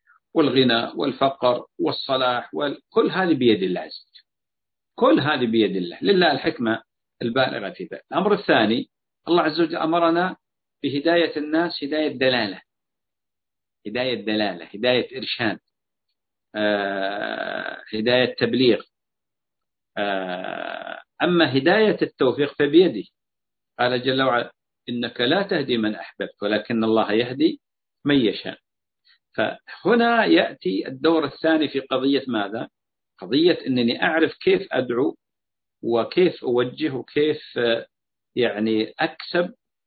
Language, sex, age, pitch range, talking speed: Arabic, male, 50-69, 115-160 Hz, 105 wpm